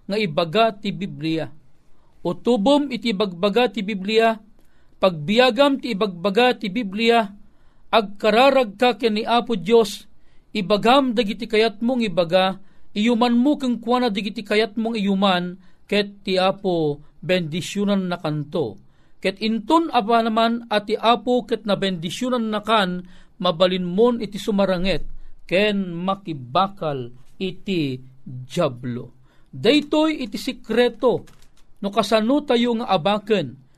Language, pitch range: Filipino, 185-240 Hz